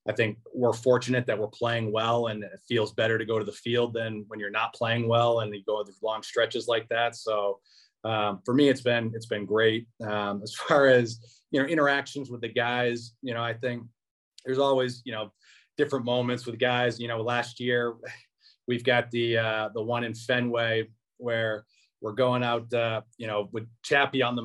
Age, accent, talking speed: 30-49, American, 210 wpm